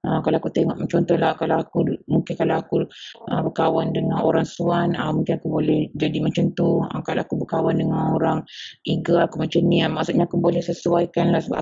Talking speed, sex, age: 210 wpm, female, 30-49